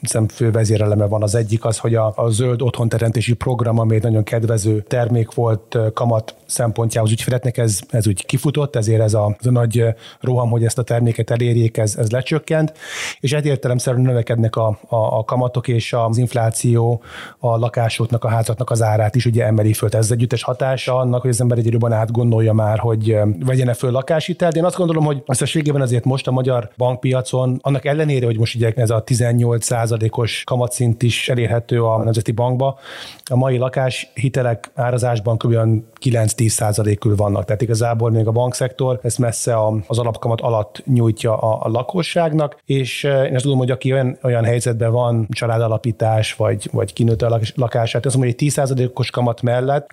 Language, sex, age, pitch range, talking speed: Hungarian, male, 30-49, 115-130 Hz, 180 wpm